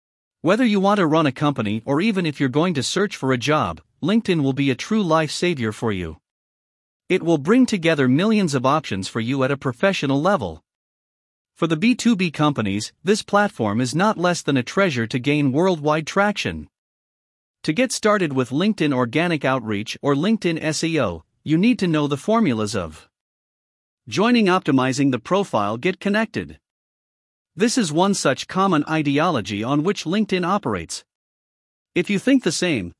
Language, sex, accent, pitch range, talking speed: English, male, American, 130-190 Hz, 170 wpm